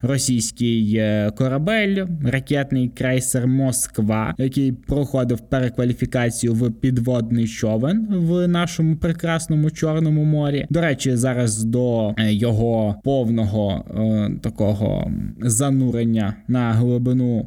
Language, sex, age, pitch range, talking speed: Ukrainian, male, 20-39, 115-145 Hz, 95 wpm